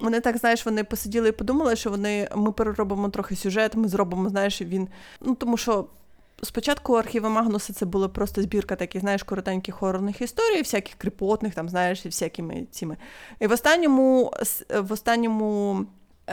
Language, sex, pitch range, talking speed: Ukrainian, female, 190-245 Hz, 160 wpm